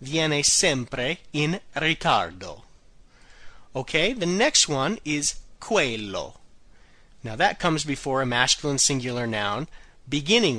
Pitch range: 125-175 Hz